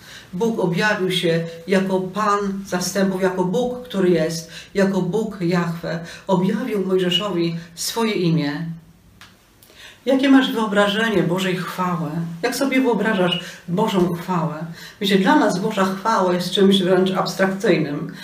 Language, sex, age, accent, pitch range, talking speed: Polish, female, 40-59, native, 175-225 Hz, 115 wpm